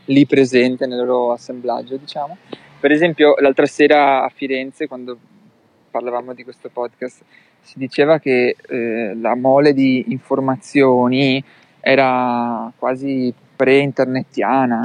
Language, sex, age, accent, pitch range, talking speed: Italian, male, 20-39, native, 125-140 Hz, 115 wpm